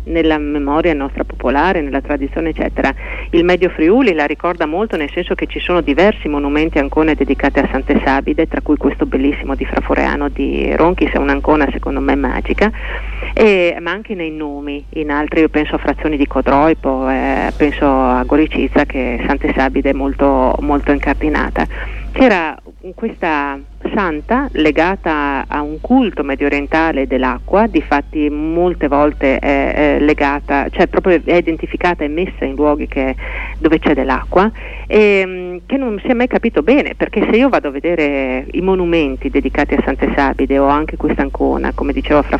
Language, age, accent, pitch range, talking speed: Italian, 40-59, native, 140-180 Hz, 165 wpm